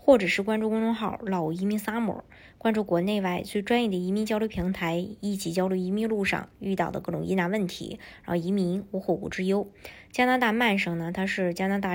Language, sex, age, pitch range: Chinese, male, 20-39, 185-215 Hz